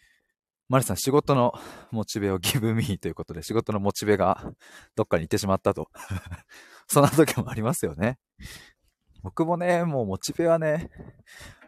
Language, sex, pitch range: Japanese, male, 90-135 Hz